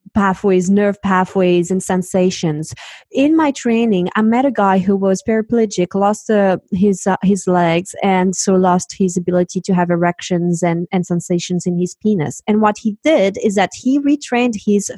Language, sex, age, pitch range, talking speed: English, female, 20-39, 185-230 Hz, 175 wpm